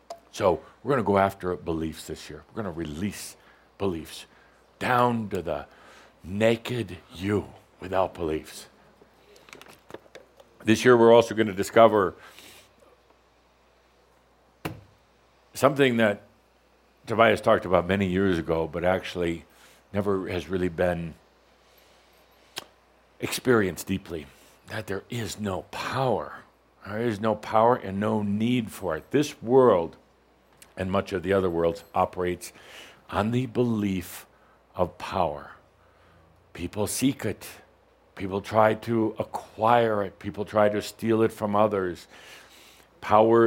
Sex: male